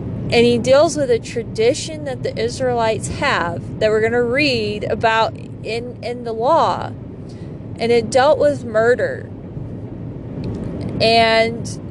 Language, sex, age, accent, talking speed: English, female, 30-49, American, 130 wpm